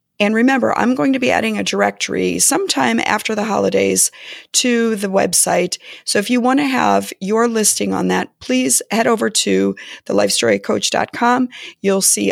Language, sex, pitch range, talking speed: English, female, 175-240 Hz, 160 wpm